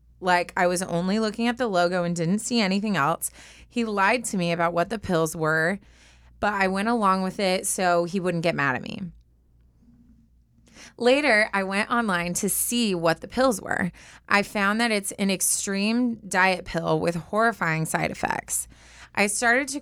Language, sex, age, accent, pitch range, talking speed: English, female, 20-39, American, 170-205 Hz, 180 wpm